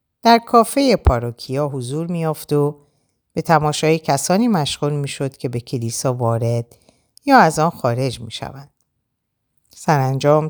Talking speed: 120 wpm